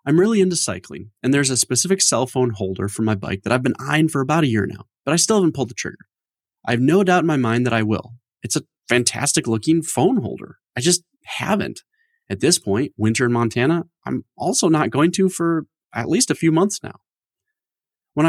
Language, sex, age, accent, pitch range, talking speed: English, male, 30-49, American, 110-170 Hz, 225 wpm